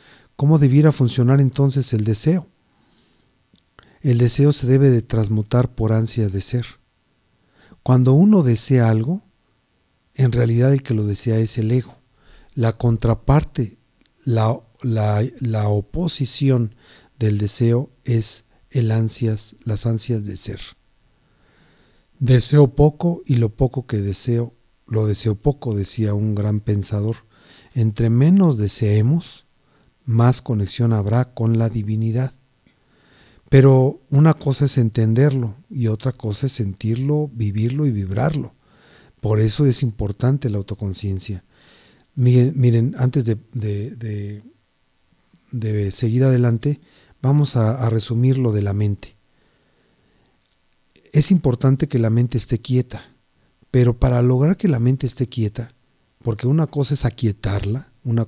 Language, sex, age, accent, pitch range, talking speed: Spanish, male, 50-69, Mexican, 110-130 Hz, 120 wpm